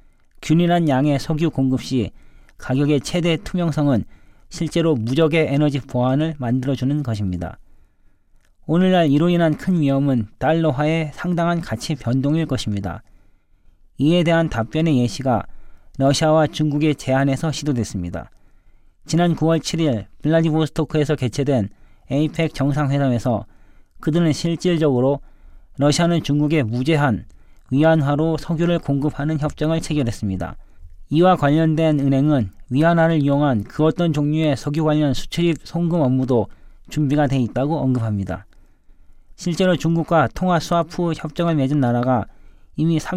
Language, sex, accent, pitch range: Korean, male, native, 125-160 Hz